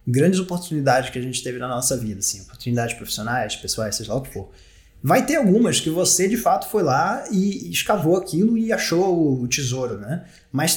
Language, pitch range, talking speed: Portuguese, 125-170 Hz, 200 wpm